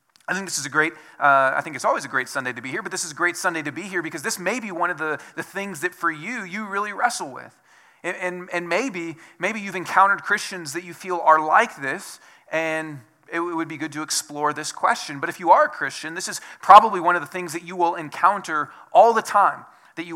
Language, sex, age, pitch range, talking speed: English, male, 30-49, 140-175 Hz, 265 wpm